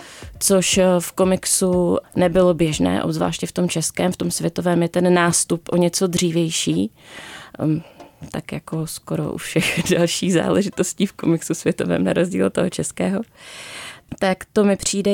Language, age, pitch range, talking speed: Czech, 20-39, 175-195 Hz, 145 wpm